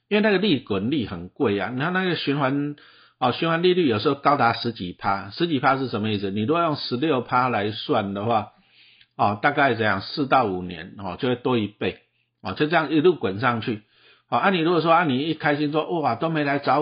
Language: Chinese